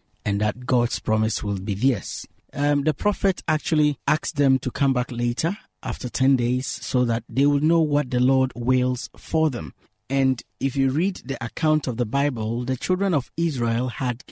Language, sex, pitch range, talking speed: English, male, 120-155 Hz, 190 wpm